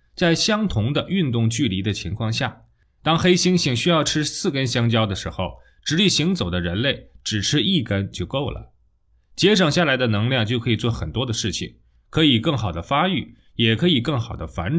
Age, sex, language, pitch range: 20-39, male, Chinese, 100-155 Hz